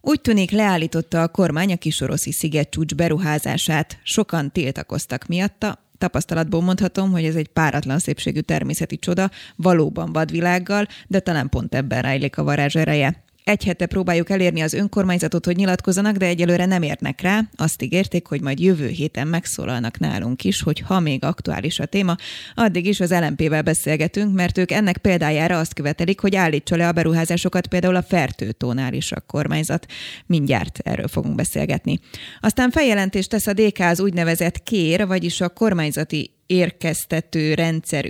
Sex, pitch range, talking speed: female, 155-190 Hz, 155 wpm